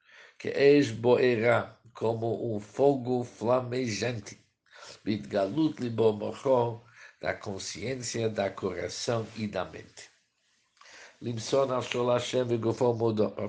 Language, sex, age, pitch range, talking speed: Spanish, male, 60-79, 110-130 Hz, 100 wpm